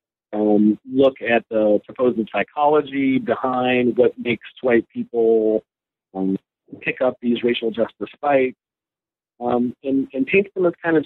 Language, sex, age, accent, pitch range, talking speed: English, male, 50-69, American, 110-140 Hz, 140 wpm